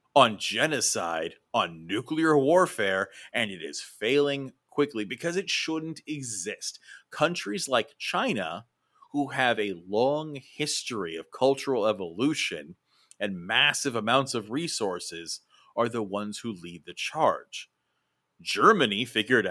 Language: English